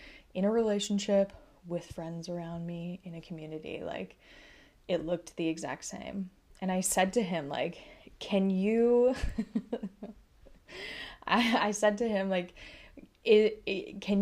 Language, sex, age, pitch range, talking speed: English, female, 20-39, 175-220 Hz, 140 wpm